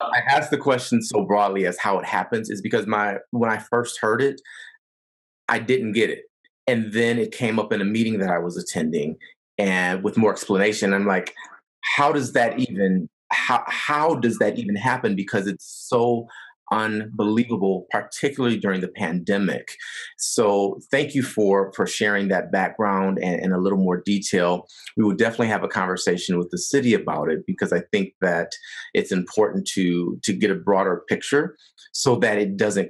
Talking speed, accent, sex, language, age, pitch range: 180 wpm, American, male, English, 30-49, 100-125 Hz